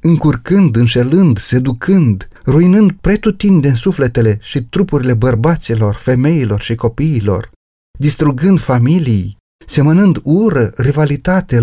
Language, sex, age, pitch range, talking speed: Romanian, male, 40-59, 115-165 Hz, 95 wpm